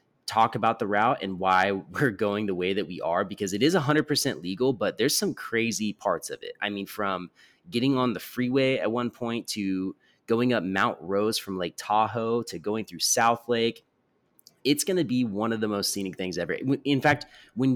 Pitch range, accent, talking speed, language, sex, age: 100-135 Hz, American, 210 wpm, English, male, 30-49